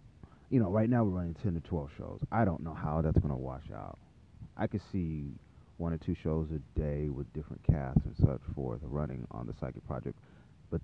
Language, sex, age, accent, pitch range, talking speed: English, male, 30-49, American, 75-100 Hz, 225 wpm